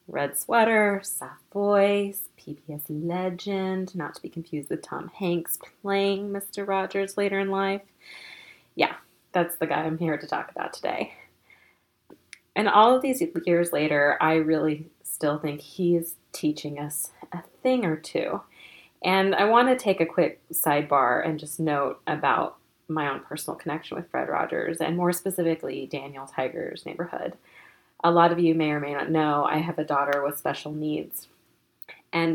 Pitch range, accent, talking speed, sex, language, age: 150-185 Hz, American, 160 wpm, female, English, 30-49